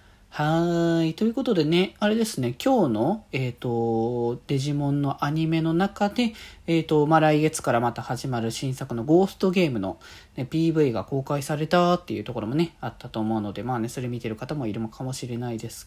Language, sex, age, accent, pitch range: Japanese, male, 40-59, native, 120-180 Hz